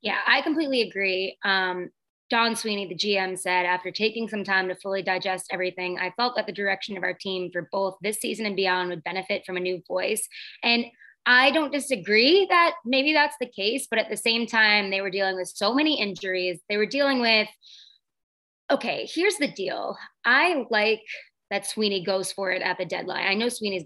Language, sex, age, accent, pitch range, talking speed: English, female, 20-39, American, 180-220 Hz, 200 wpm